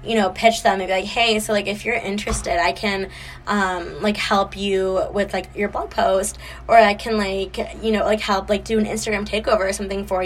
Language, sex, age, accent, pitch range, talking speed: English, female, 10-29, American, 195-225 Hz, 235 wpm